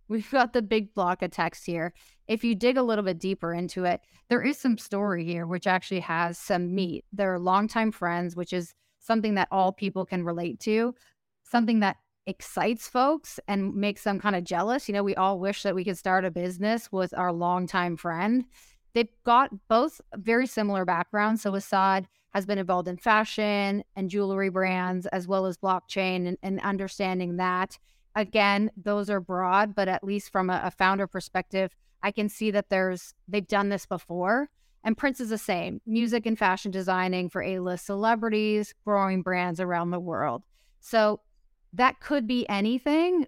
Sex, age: female, 30-49